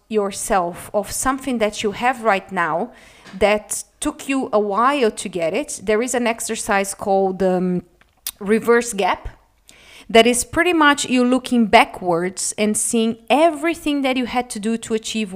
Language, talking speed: English, 160 wpm